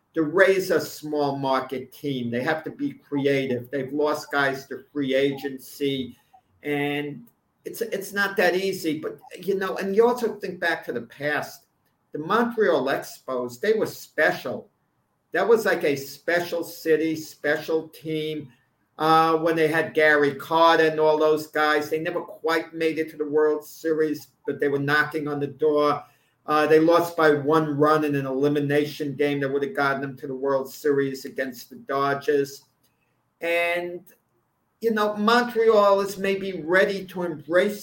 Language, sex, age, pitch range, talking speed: English, male, 50-69, 145-185 Hz, 165 wpm